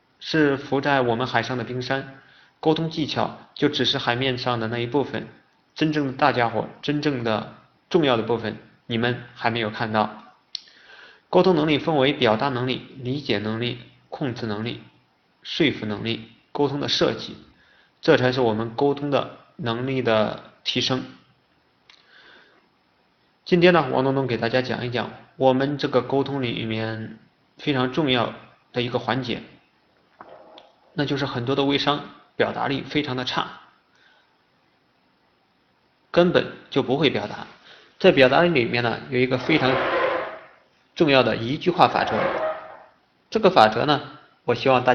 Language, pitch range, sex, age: Chinese, 115-145 Hz, male, 20-39